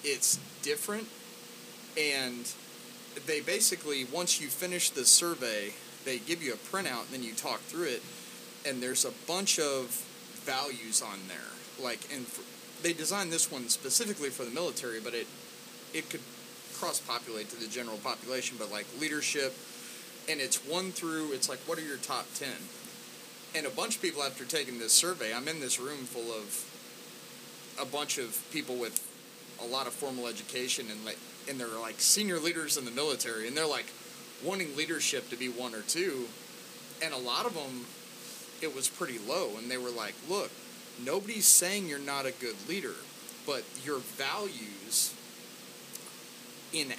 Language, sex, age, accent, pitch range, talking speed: English, male, 30-49, American, 120-170 Hz, 170 wpm